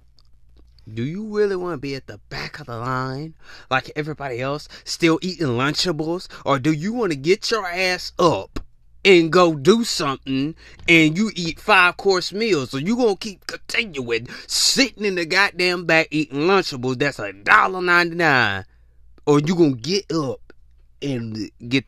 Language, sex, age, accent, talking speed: English, male, 30-49, American, 160 wpm